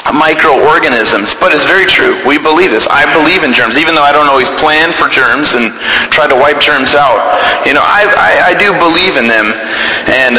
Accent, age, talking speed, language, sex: American, 30-49, 210 wpm, English, male